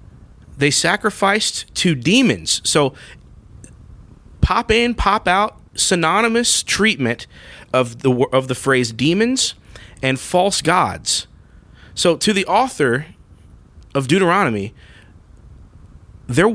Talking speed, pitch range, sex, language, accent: 100 wpm, 120-180 Hz, male, English, American